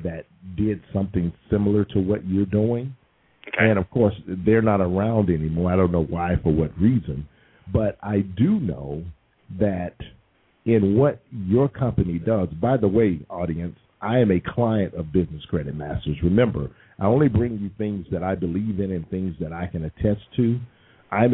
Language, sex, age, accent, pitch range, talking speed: English, male, 50-69, American, 90-120 Hz, 175 wpm